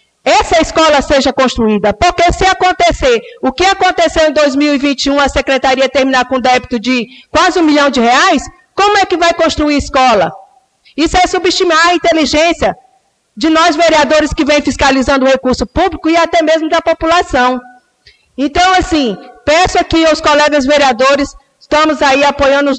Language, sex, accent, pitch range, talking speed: Portuguese, female, Brazilian, 265-335 Hz, 155 wpm